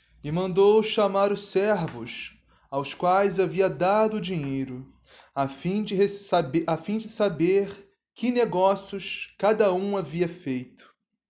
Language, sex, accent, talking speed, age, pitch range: Portuguese, male, Brazilian, 125 wpm, 20-39, 160-205 Hz